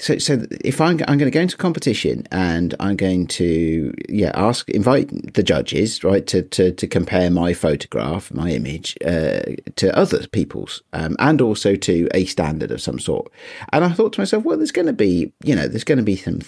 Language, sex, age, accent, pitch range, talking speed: English, male, 40-59, British, 80-105 Hz, 210 wpm